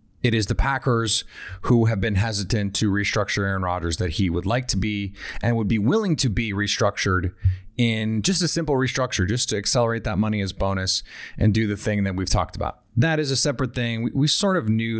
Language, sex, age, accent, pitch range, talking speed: English, male, 30-49, American, 100-125 Hz, 220 wpm